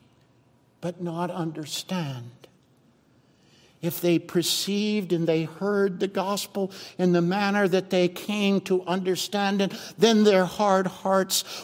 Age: 60-79